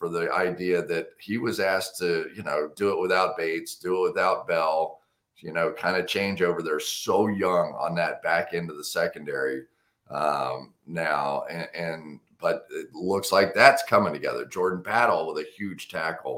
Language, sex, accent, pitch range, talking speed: English, male, American, 85-105 Hz, 185 wpm